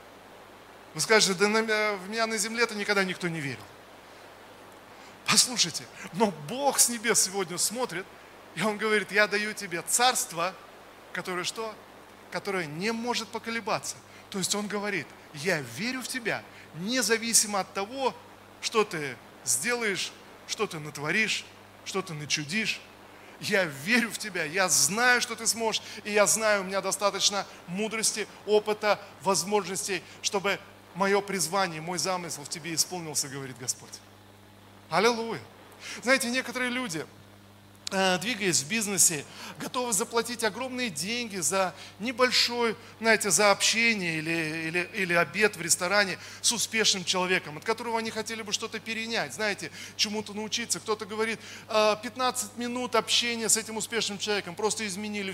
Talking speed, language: 135 wpm, Russian